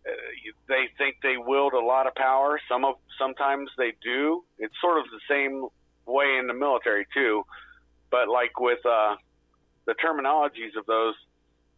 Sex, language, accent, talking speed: male, English, American, 165 wpm